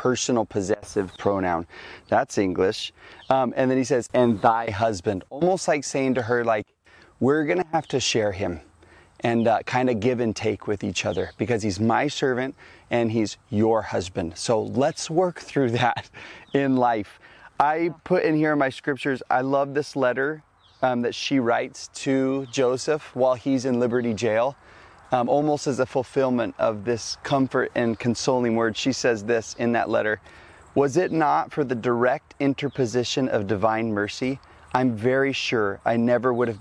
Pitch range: 110-135 Hz